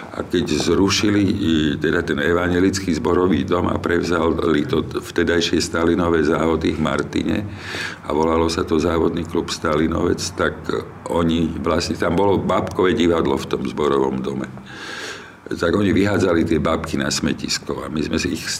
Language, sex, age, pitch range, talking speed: Slovak, male, 50-69, 75-85 Hz, 150 wpm